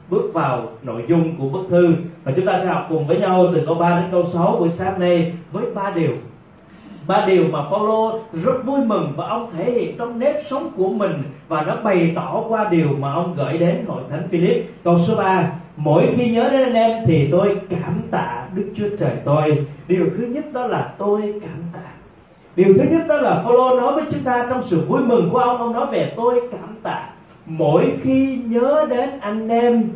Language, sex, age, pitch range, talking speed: Vietnamese, male, 30-49, 165-240 Hz, 215 wpm